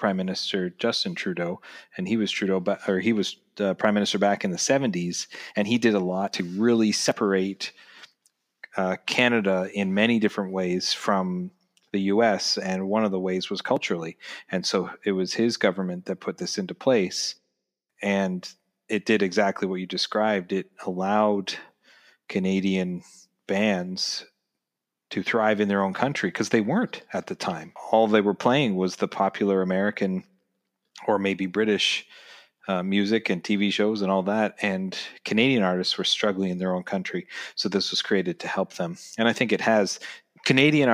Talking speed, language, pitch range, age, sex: 170 wpm, English, 95-110 Hz, 30-49, male